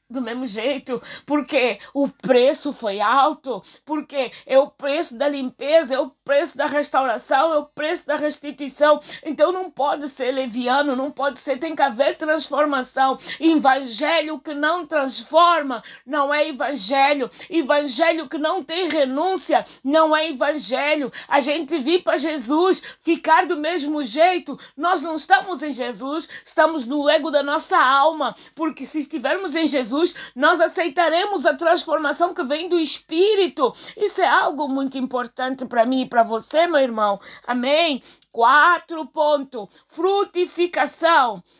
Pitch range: 265-325 Hz